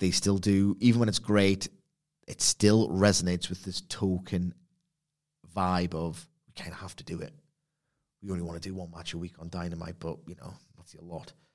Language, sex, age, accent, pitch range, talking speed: English, male, 30-49, British, 90-125 Hz, 205 wpm